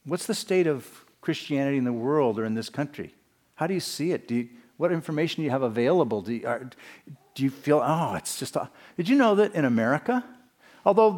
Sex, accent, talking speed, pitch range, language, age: male, American, 200 wpm, 140-200 Hz, English, 50-69